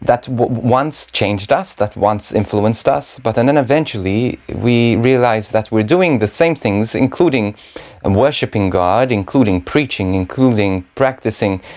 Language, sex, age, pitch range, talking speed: English, male, 30-49, 105-130 Hz, 150 wpm